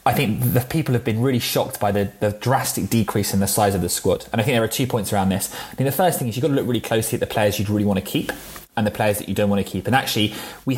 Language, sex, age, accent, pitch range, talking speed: English, male, 20-39, British, 100-125 Hz, 335 wpm